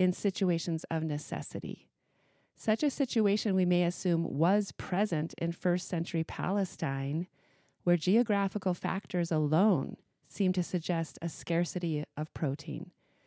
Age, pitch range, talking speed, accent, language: 40-59, 160-195 Hz, 120 wpm, American, English